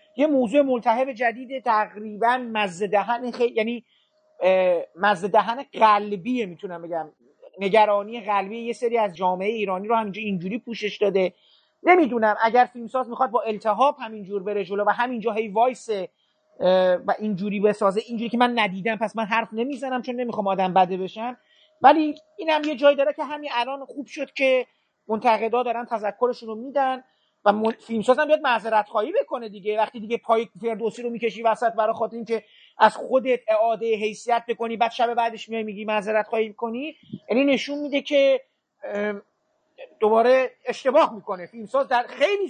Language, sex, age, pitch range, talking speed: Persian, male, 40-59, 220-285 Hz, 155 wpm